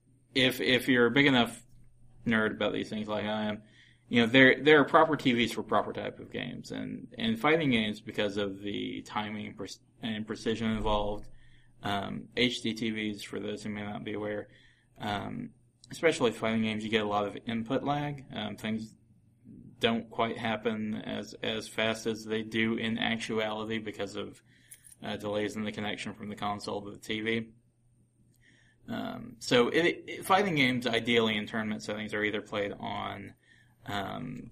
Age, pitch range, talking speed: 20-39, 105-125 Hz, 165 wpm